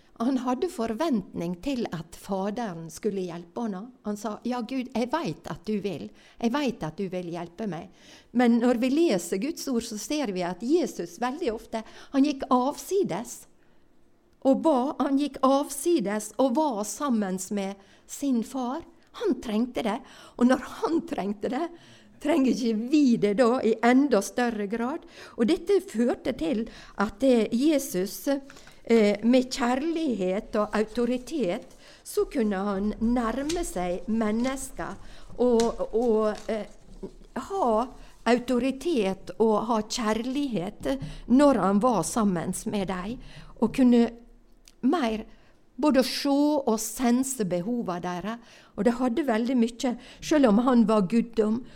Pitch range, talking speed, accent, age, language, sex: 210-265 Hz, 135 wpm, Swedish, 60-79, English, female